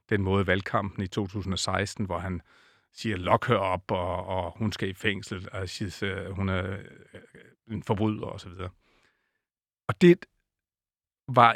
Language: Danish